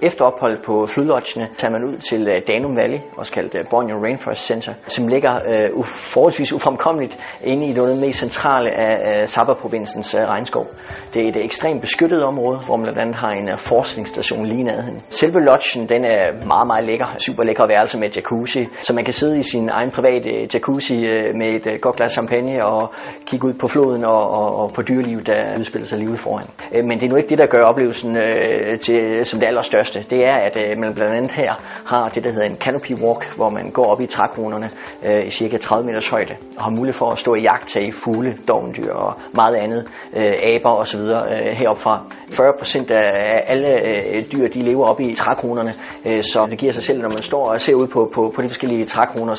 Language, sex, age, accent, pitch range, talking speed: Danish, male, 30-49, native, 110-125 Hz, 210 wpm